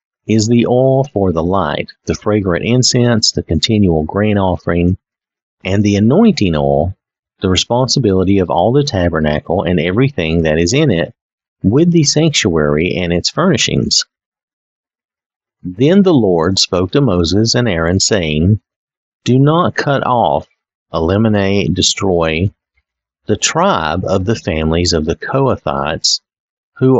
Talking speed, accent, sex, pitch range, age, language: 130 wpm, American, male, 85-115 Hz, 50-69, English